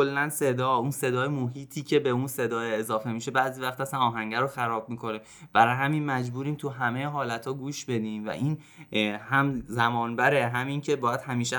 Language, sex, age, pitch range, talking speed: Persian, male, 20-39, 110-145 Hz, 175 wpm